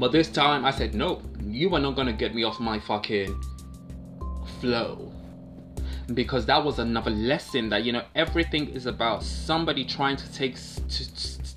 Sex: male